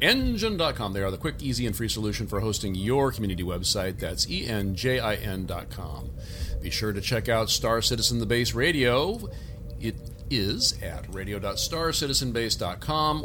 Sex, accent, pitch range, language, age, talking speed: male, American, 100-125 Hz, English, 40-59, 135 wpm